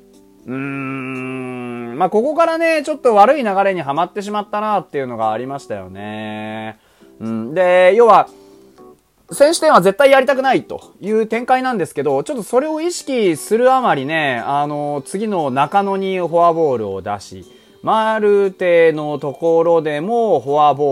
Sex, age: male, 20-39